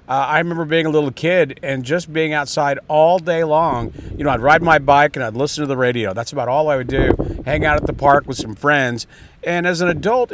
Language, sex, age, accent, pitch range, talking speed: English, male, 50-69, American, 135-175 Hz, 255 wpm